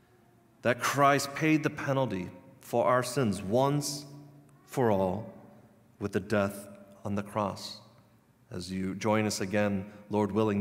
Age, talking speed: 40-59, 135 wpm